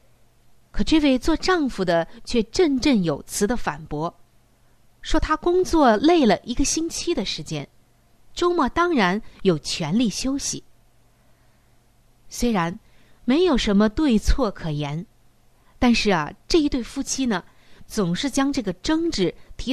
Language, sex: Chinese, female